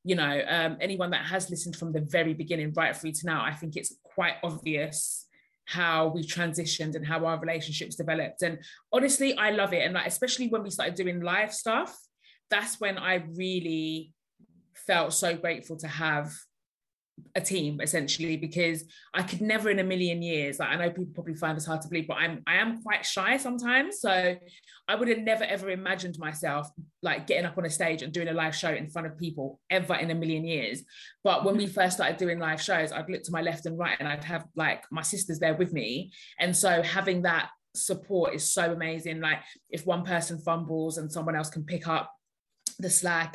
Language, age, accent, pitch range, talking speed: English, 20-39, British, 160-185 Hz, 210 wpm